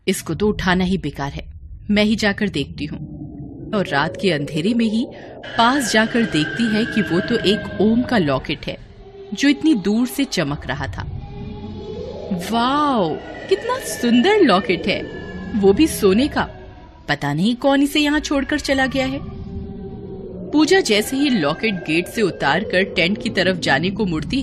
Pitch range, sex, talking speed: 170-255 Hz, female, 165 wpm